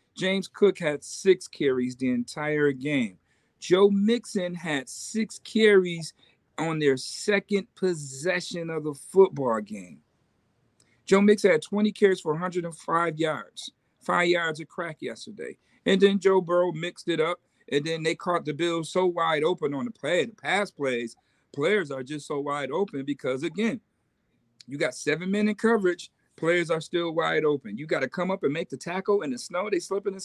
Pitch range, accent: 145-200 Hz, American